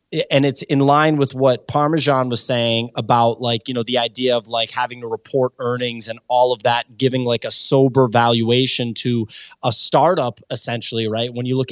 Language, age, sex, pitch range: English, 20-39, male, 120-145 Hz